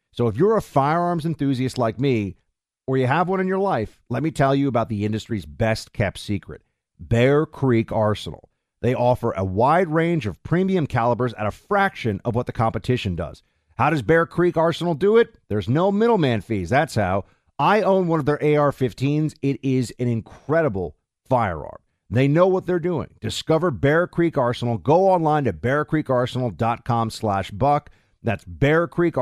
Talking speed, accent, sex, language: 175 wpm, American, male, English